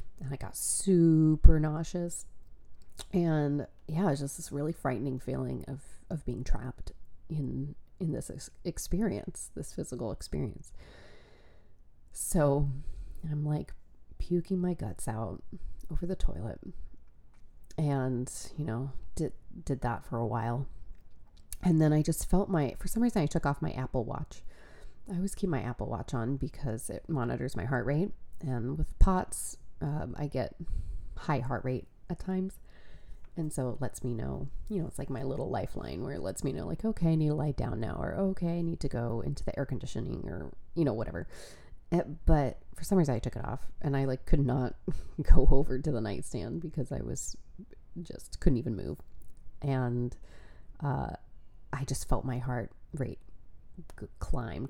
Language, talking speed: English, 175 wpm